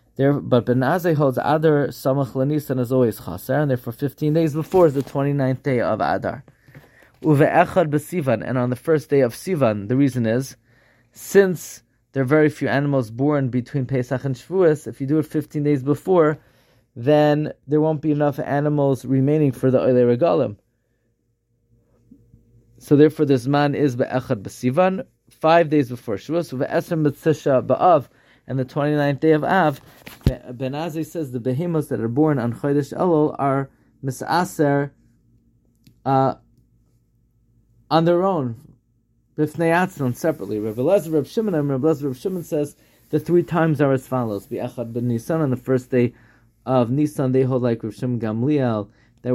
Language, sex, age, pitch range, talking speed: English, male, 20-39, 120-150 Hz, 155 wpm